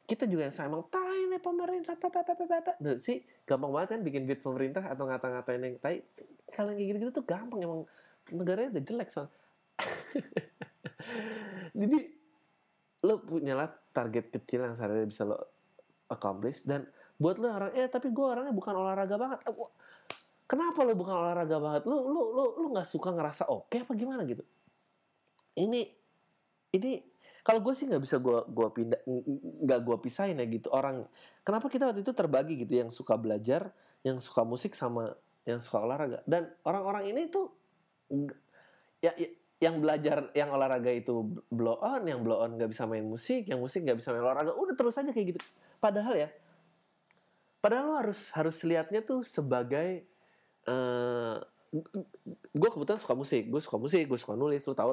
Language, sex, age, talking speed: Indonesian, male, 30-49, 170 wpm